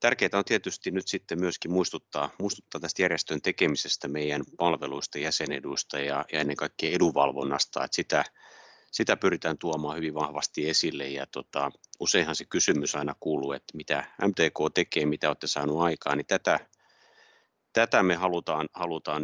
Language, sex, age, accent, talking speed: Finnish, male, 30-49, native, 145 wpm